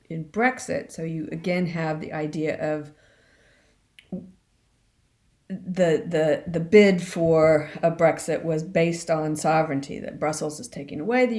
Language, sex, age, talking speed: English, female, 50-69, 135 wpm